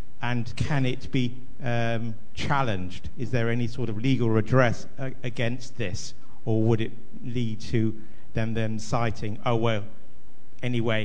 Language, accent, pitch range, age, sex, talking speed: English, British, 110-125 Hz, 50-69, male, 145 wpm